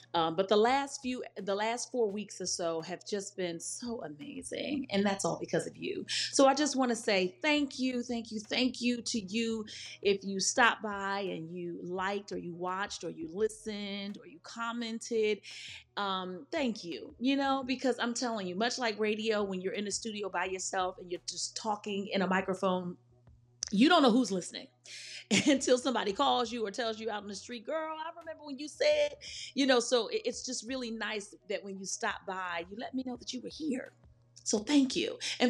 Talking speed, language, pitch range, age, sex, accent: 210 wpm, English, 190-265 Hz, 30-49, female, American